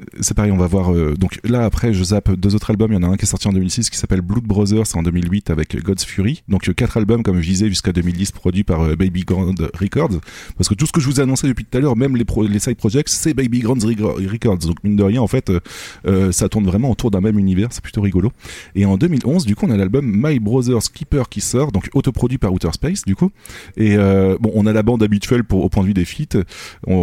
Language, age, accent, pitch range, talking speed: French, 30-49, French, 95-115 Hz, 280 wpm